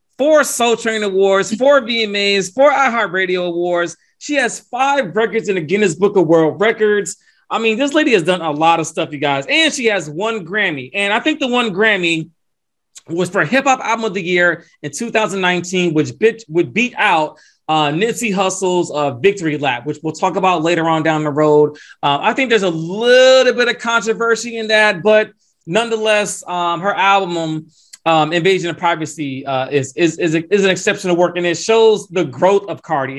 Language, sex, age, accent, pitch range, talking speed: English, male, 30-49, American, 165-225 Hz, 200 wpm